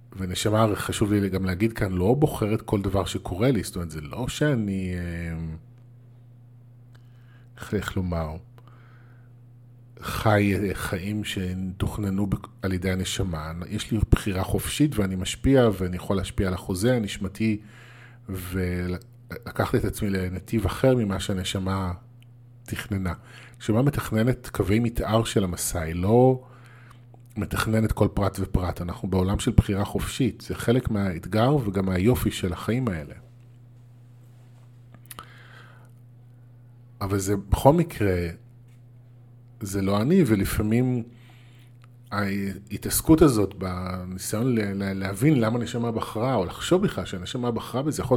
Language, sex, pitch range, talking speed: Hebrew, male, 95-120 Hz, 120 wpm